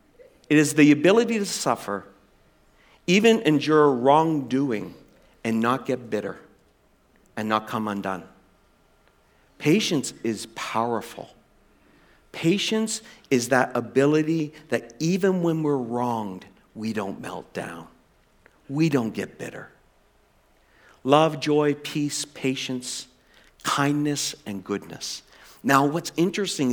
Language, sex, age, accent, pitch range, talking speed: English, male, 50-69, American, 120-170 Hz, 105 wpm